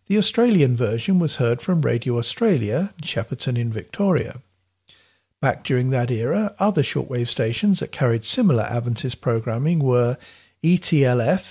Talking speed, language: 135 wpm, English